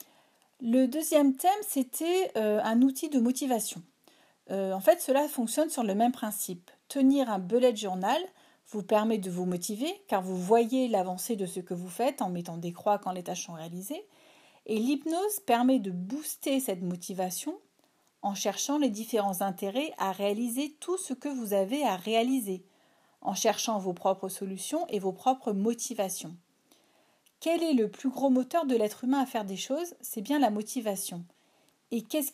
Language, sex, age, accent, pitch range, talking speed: French, female, 40-59, French, 195-265 Hz, 175 wpm